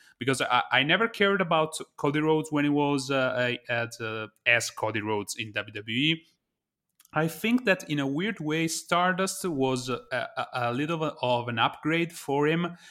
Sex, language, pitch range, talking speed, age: male, English, 115-155 Hz, 165 wpm, 30-49